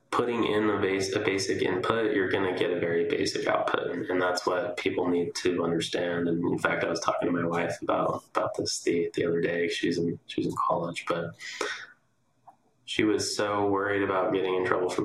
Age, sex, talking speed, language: 20-39, male, 210 wpm, English